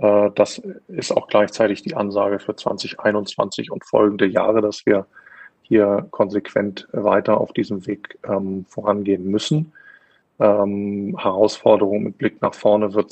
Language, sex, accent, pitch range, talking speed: German, male, German, 100-110 Hz, 135 wpm